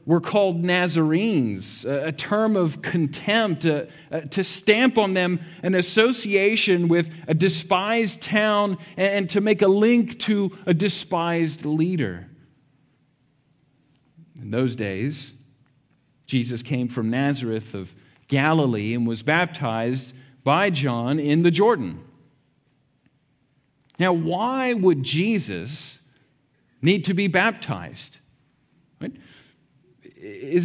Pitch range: 140-185 Hz